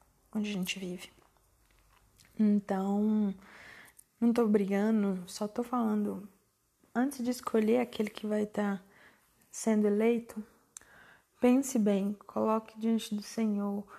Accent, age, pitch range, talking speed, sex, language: Brazilian, 20-39, 200-225 Hz, 115 wpm, female, Portuguese